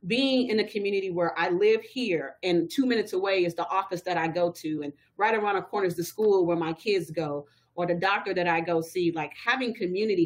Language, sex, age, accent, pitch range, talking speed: English, female, 30-49, American, 165-215 Hz, 240 wpm